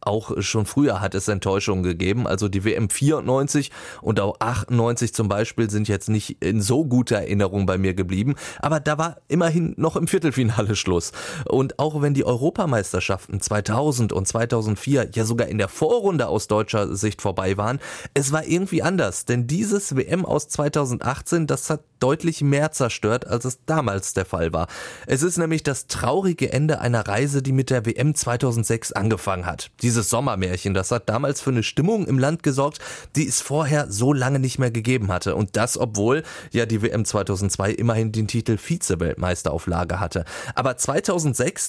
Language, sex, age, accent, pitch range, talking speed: German, male, 30-49, German, 105-145 Hz, 175 wpm